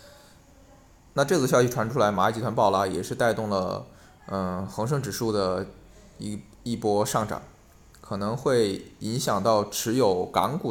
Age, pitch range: 20-39, 95-125 Hz